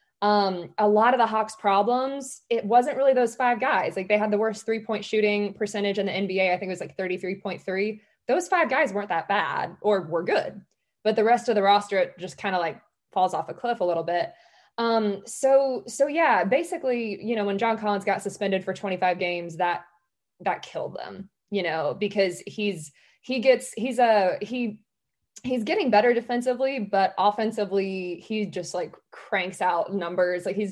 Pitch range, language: 185-220 Hz, English